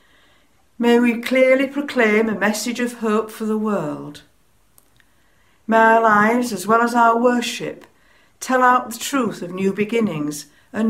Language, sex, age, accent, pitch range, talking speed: English, female, 60-79, British, 175-245 Hz, 150 wpm